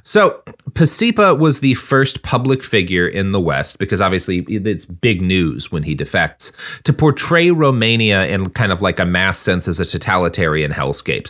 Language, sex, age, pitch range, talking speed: English, male, 30-49, 95-130 Hz, 170 wpm